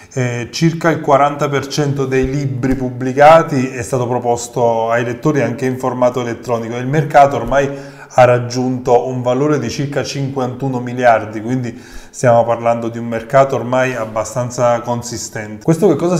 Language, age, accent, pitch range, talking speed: Italian, 20-39, native, 120-140 Hz, 145 wpm